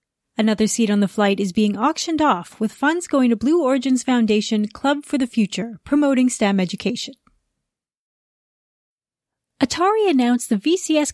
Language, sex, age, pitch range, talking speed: English, female, 30-49, 205-275 Hz, 145 wpm